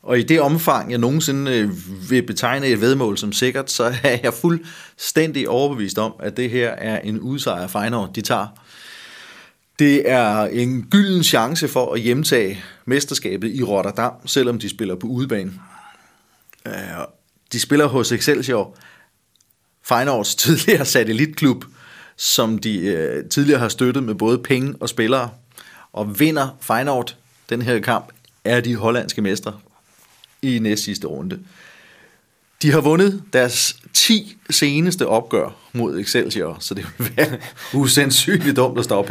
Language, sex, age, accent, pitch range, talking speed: Danish, male, 30-49, native, 115-150 Hz, 140 wpm